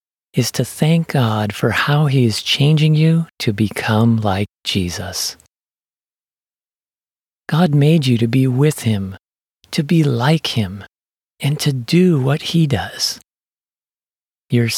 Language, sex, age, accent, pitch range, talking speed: English, male, 40-59, American, 110-155 Hz, 130 wpm